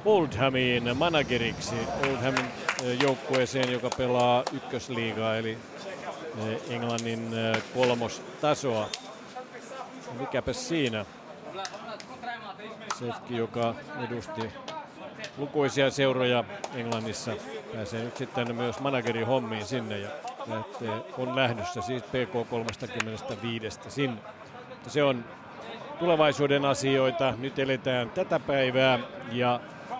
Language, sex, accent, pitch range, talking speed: Finnish, male, native, 125-150 Hz, 75 wpm